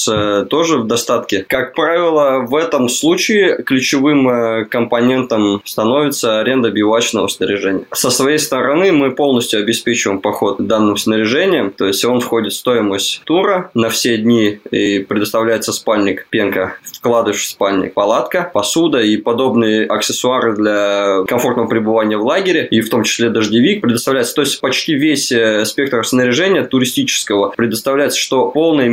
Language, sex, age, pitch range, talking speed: Russian, male, 20-39, 105-125 Hz, 140 wpm